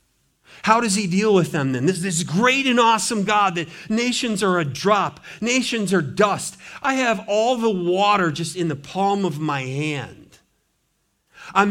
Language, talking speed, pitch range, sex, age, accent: English, 175 wpm, 150-205 Hz, male, 50-69, American